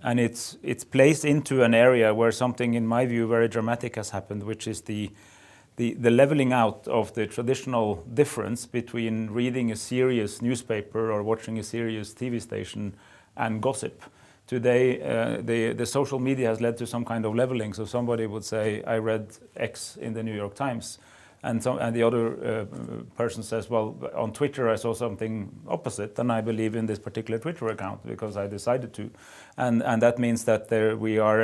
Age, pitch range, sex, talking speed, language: 30-49, 110-120 Hz, male, 190 wpm, English